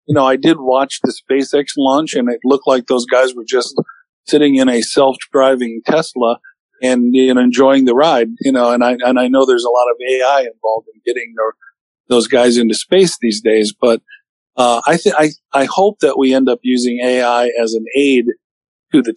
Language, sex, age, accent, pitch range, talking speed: English, male, 50-69, American, 115-135 Hz, 210 wpm